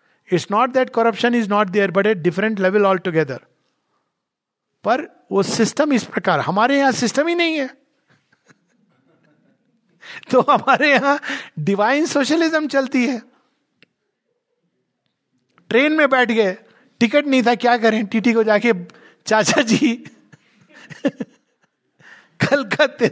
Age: 50-69